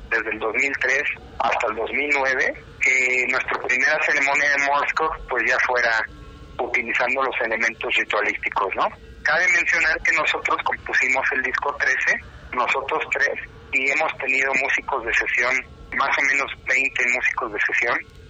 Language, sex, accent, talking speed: Spanish, male, Mexican, 140 wpm